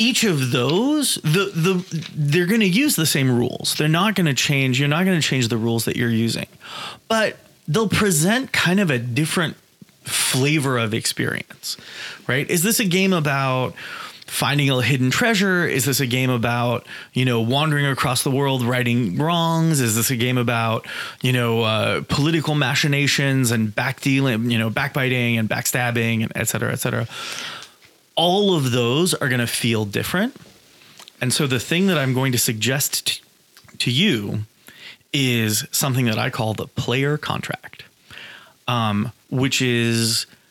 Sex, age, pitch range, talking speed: male, 30-49, 120-160 Hz, 165 wpm